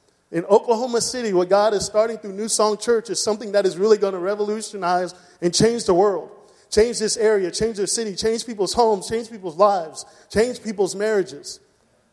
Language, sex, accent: English, male, American